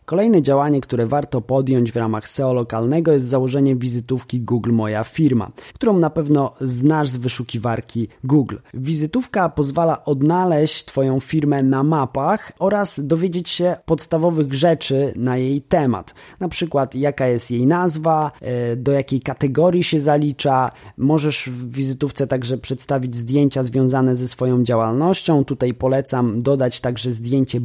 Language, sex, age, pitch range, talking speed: Polish, male, 20-39, 125-155 Hz, 135 wpm